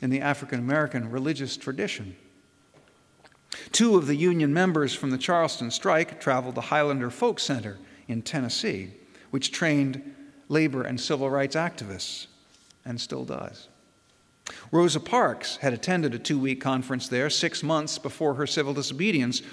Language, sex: English, male